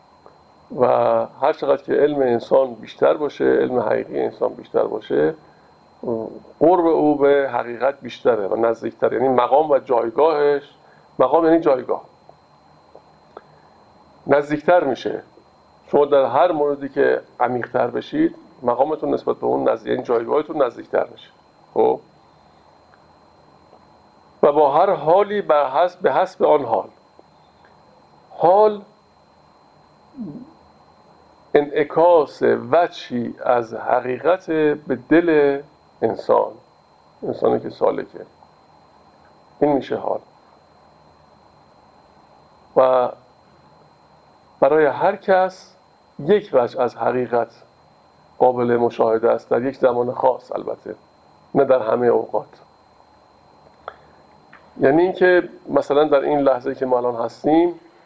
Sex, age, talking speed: male, 50-69, 100 wpm